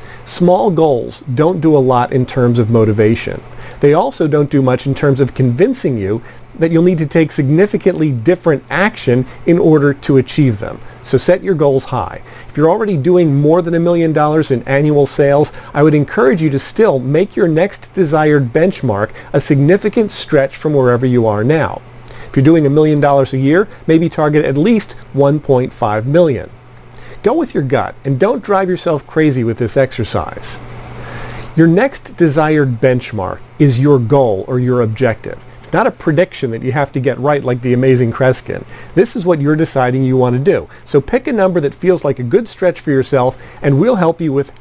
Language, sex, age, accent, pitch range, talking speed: English, male, 40-59, American, 125-165 Hz, 195 wpm